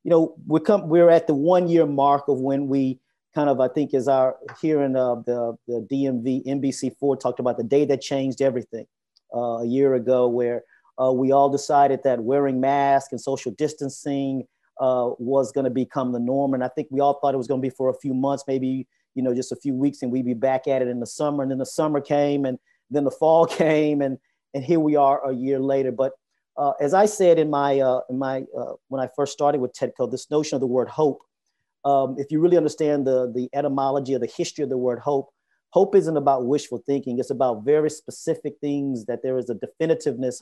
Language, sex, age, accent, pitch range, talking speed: English, male, 40-59, American, 130-145 Hz, 230 wpm